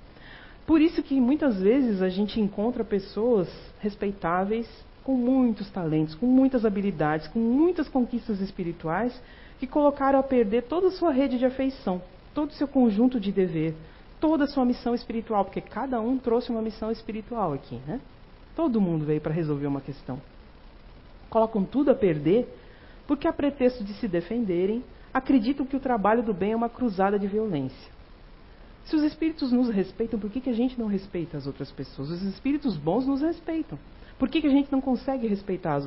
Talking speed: 180 wpm